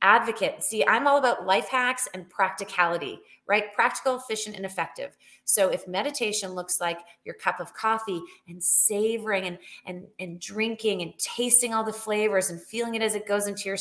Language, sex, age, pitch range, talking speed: English, female, 30-49, 180-220 Hz, 180 wpm